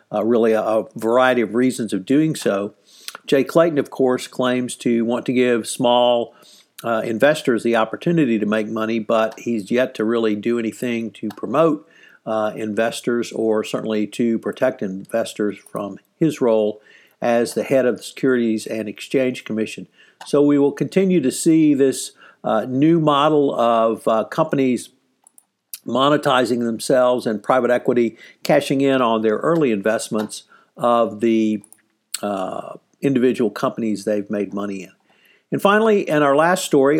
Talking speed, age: 150 wpm, 50-69